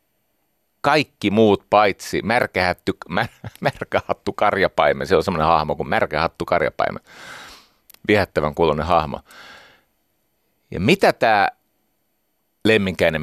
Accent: native